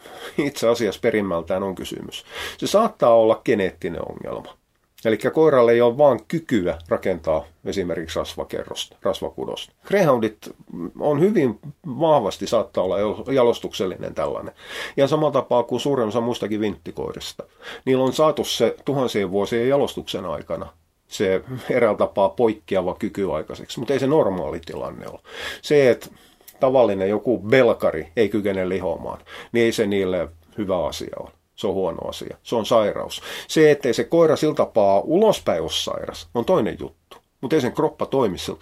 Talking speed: 145 wpm